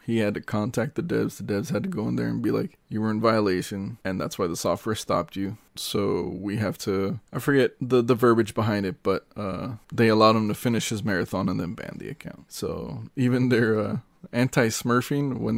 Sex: male